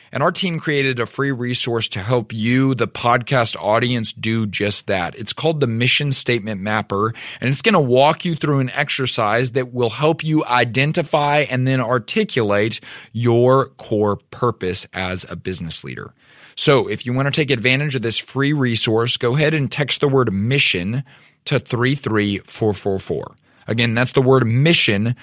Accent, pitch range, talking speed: American, 105-140 Hz, 170 wpm